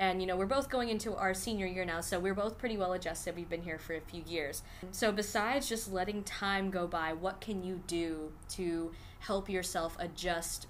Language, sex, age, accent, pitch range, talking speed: English, female, 20-39, American, 170-200 Hz, 220 wpm